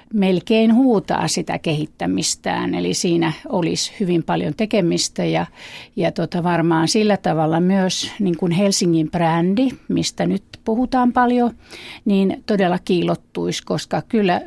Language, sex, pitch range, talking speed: Finnish, female, 165-210 Hz, 110 wpm